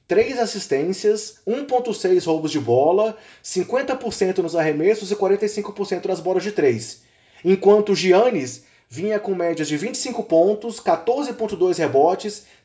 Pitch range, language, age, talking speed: 170-230 Hz, Portuguese, 20-39, 120 wpm